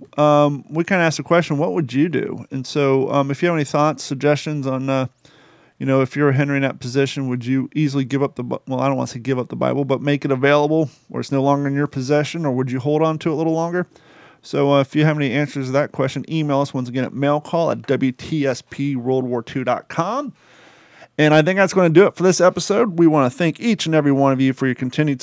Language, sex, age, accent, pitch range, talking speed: English, male, 30-49, American, 135-150 Hz, 265 wpm